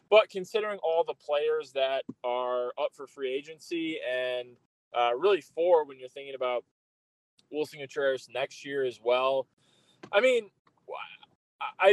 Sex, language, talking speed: male, English, 140 wpm